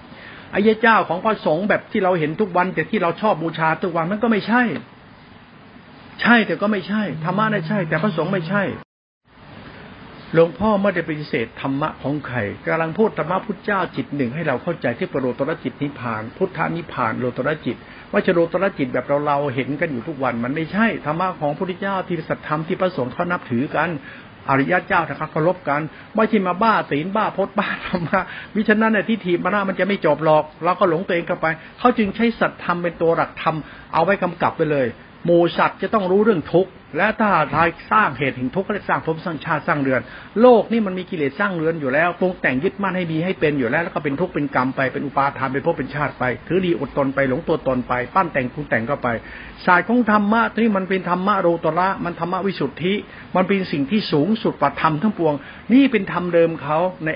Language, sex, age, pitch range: Thai, male, 60-79, 145-195 Hz